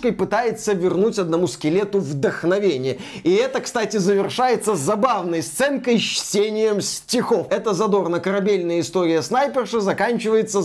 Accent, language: native, Russian